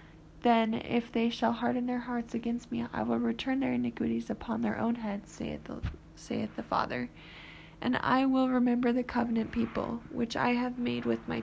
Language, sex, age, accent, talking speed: English, female, 20-39, American, 185 wpm